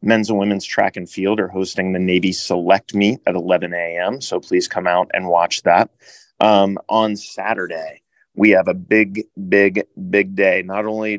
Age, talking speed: 30-49, 180 wpm